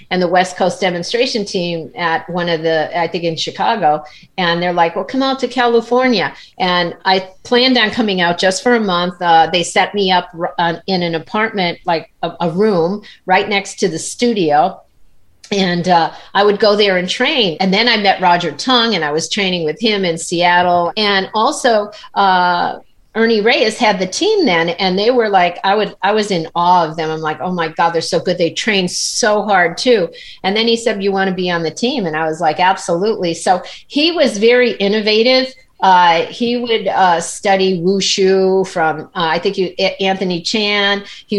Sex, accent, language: female, American, English